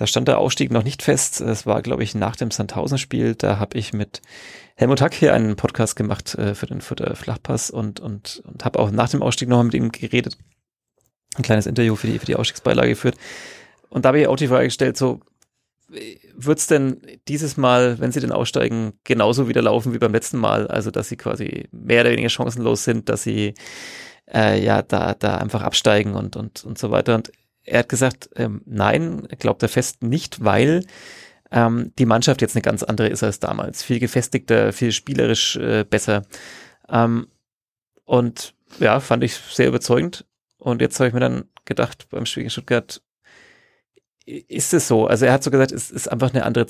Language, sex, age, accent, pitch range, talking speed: German, male, 30-49, German, 110-125 Hz, 200 wpm